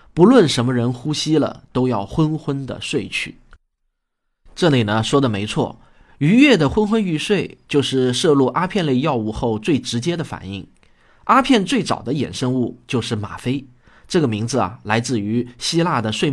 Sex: male